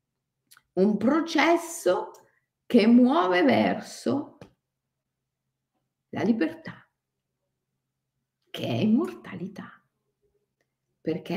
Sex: female